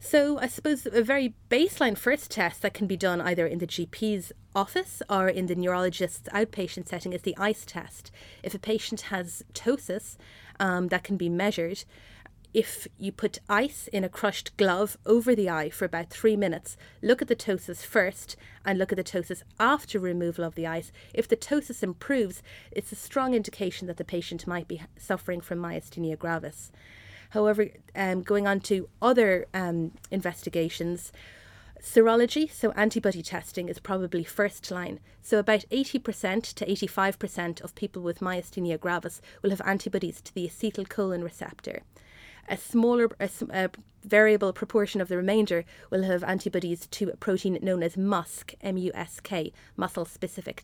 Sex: female